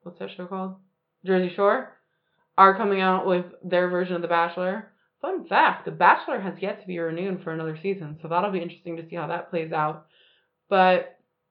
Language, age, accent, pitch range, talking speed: English, 20-39, American, 175-210 Hz, 200 wpm